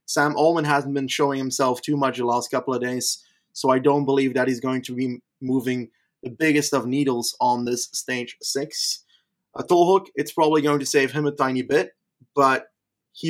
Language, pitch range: English, 125-145 Hz